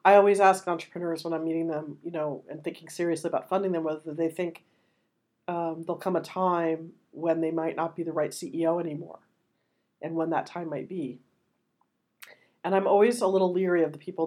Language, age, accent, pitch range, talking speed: English, 40-59, American, 150-175 Hz, 205 wpm